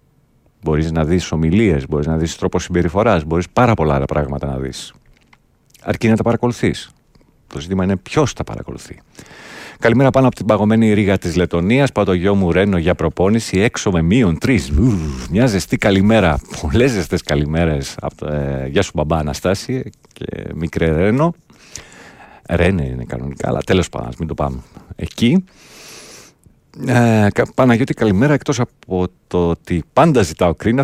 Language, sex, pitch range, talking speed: Greek, male, 80-110 Hz, 150 wpm